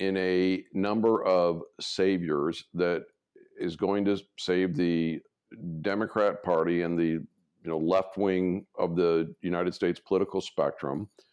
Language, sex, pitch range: English, male, 90-105 Hz